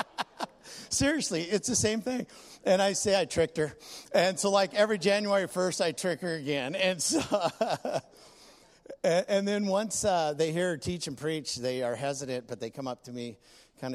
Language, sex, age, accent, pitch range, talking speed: English, male, 50-69, American, 125-175 Hz, 190 wpm